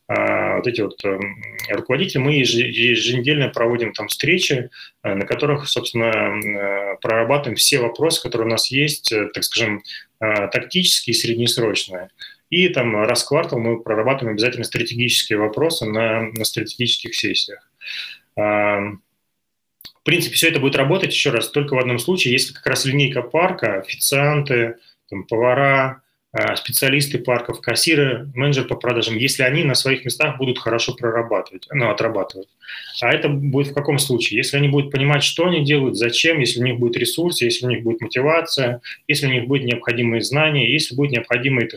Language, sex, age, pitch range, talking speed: Russian, male, 20-39, 115-140 Hz, 150 wpm